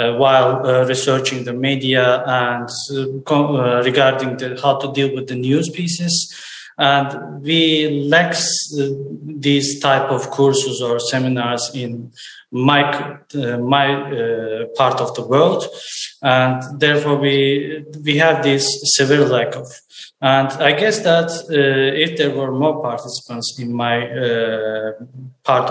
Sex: male